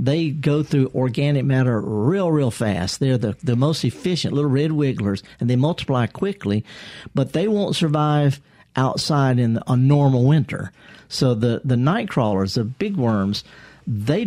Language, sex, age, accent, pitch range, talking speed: English, male, 50-69, American, 120-150 Hz, 160 wpm